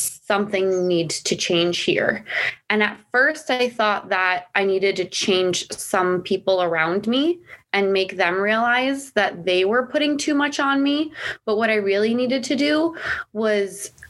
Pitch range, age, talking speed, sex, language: 185-220 Hz, 20-39, 165 wpm, female, English